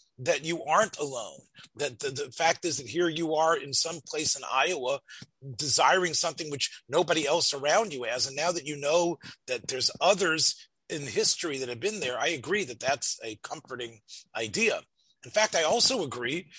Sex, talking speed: male, 190 wpm